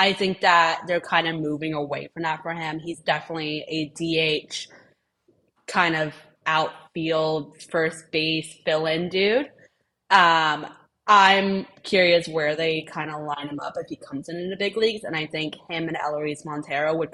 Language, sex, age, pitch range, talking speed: English, female, 20-39, 150-180 Hz, 175 wpm